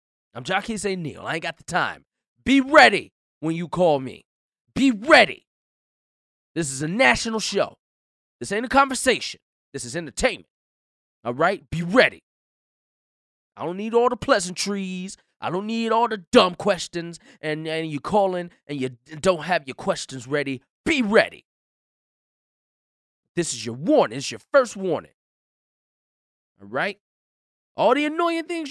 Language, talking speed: English, 155 wpm